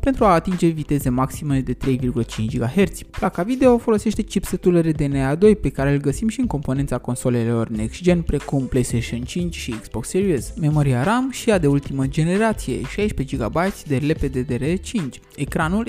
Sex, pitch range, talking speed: male, 125-185 Hz, 155 wpm